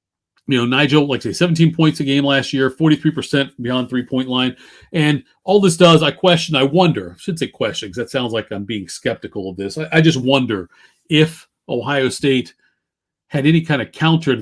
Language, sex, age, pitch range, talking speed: English, male, 40-59, 115-145 Hz, 200 wpm